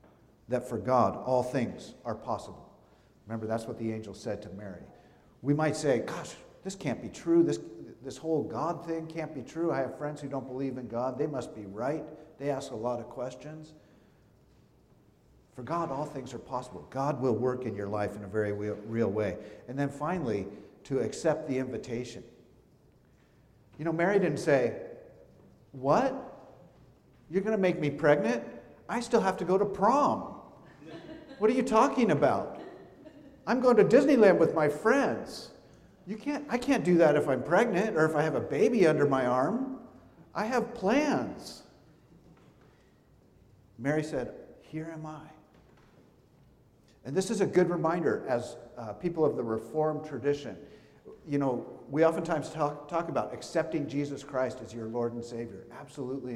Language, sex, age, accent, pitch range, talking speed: English, male, 50-69, American, 125-175 Hz, 170 wpm